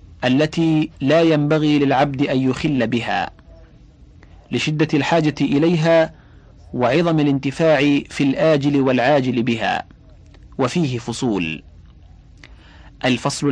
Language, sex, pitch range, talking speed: Arabic, male, 125-150 Hz, 85 wpm